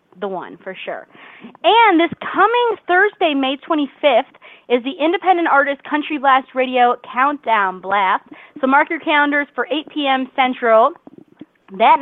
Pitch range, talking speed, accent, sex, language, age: 215-300 Hz, 140 wpm, American, female, English, 30-49